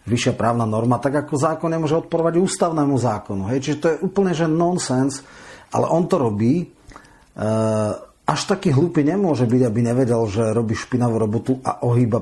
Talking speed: 170 wpm